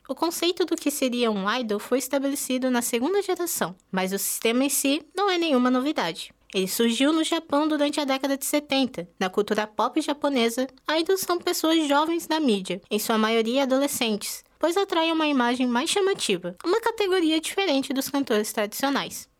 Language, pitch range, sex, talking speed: Portuguese, 210-300 Hz, female, 175 wpm